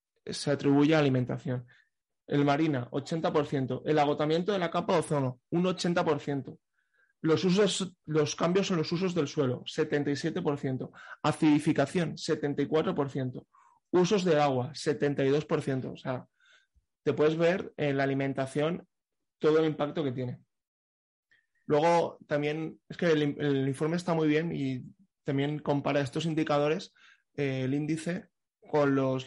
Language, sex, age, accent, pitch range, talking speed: Spanish, male, 20-39, Spanish, 140-165 Hz, 130 wpm